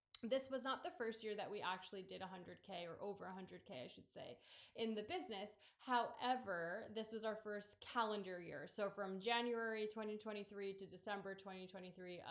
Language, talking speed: English, 165 wpm